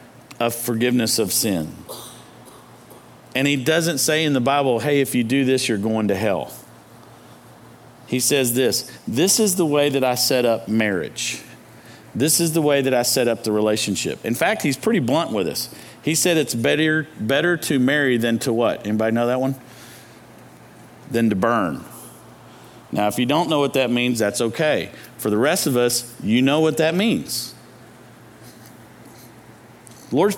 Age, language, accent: 50-69, English, American